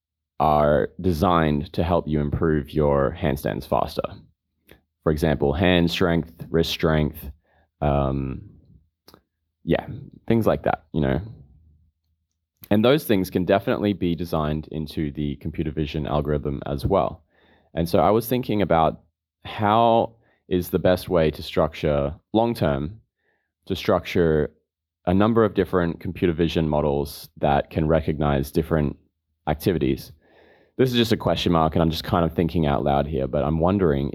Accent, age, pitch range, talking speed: Australian, 20-39, 75-90 Hz, 145 wpm